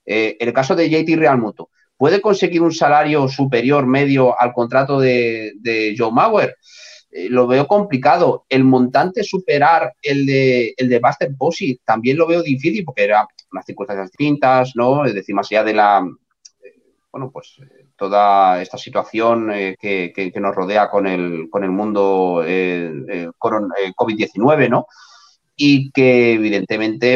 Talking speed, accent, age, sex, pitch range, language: 165 wpm, Spanish, 30-49, male, 100-140 Hz, Spanish